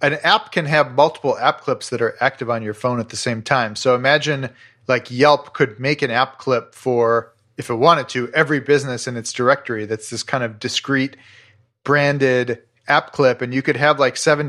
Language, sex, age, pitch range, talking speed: English, male, 40-59, 115-145 Hz, 205 wpm